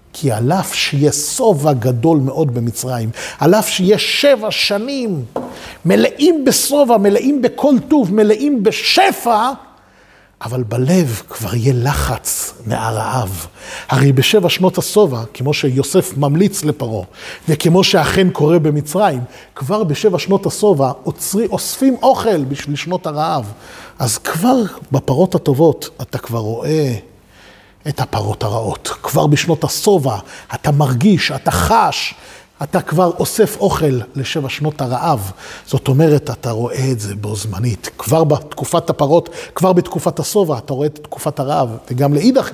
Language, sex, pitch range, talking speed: Hebrew, male, 130-185 Hz, 130 wpm